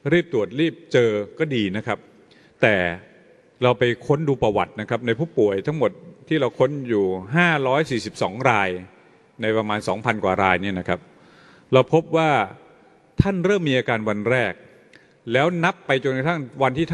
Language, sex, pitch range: Thai, male, 105-155 Hz